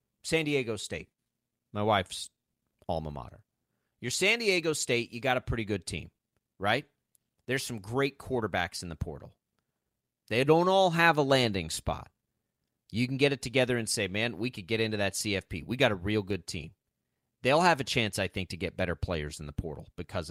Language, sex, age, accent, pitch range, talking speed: English, male, 40-59, American, 105-150 Hz, 195 wpm